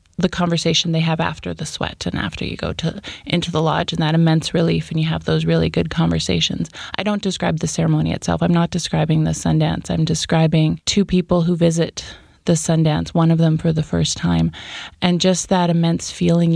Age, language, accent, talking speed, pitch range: 20-39, English, American, 205 wpm, 160-180 Hz